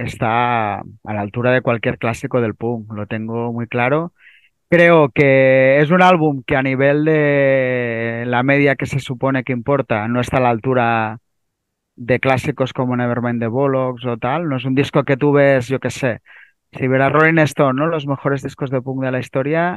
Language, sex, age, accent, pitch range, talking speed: Spanish, male, 30-49, Spanish, 120-150 Hz, 195 wpm